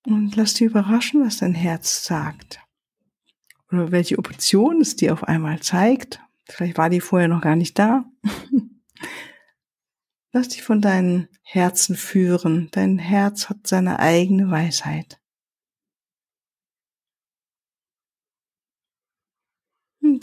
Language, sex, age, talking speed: German, female, 50-69, 110 wpm